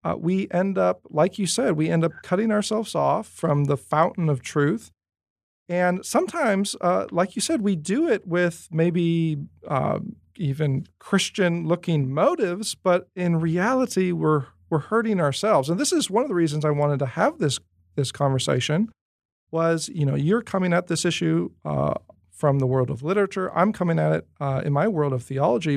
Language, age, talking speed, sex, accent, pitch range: English, 40-59, 180 wpm, male, American, 140-195 Hz